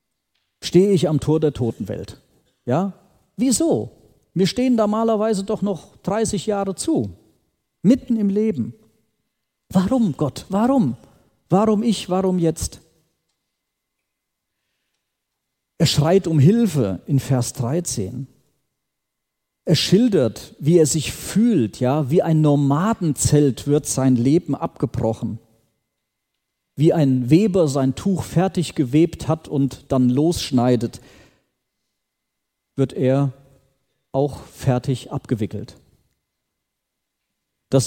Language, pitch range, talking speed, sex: German, 125-180 Hz, 105 wpm, male